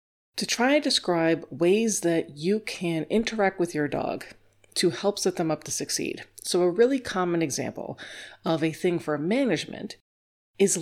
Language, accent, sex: English, American, female